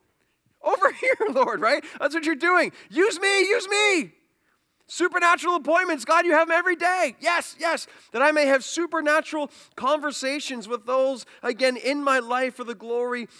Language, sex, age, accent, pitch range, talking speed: English, male, 30-49, American, 175-240 Hz, 165 wpm